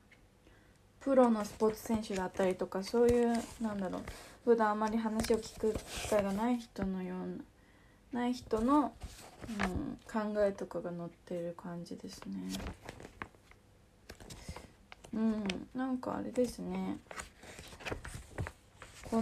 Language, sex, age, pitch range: Japanese, female, 20-39, 160-230 Hz